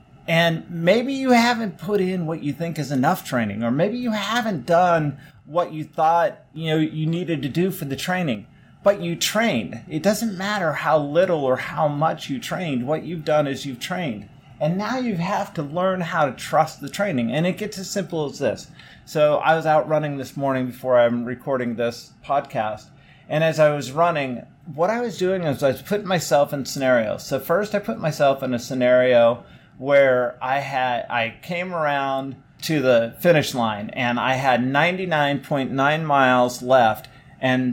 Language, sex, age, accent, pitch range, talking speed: English, male, 30-49, American, 130-170 Hz, 190 wpm